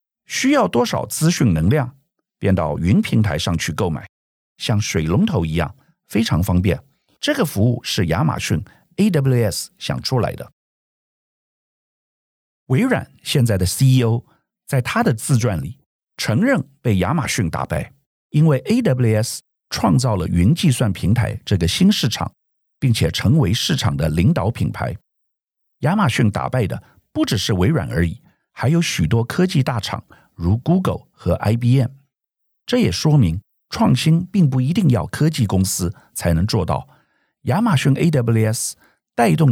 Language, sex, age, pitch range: Chinese, male, 50-69, 95-150 Hz